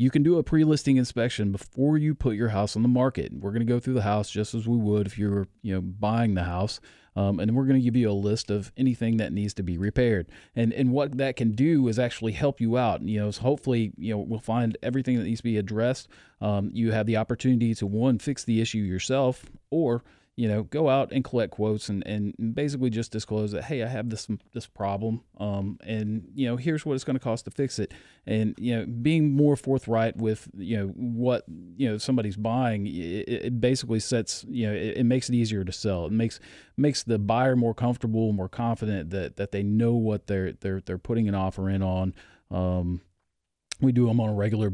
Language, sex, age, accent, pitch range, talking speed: English, male, 40-59, American, 100-125 Hz, 230 wpm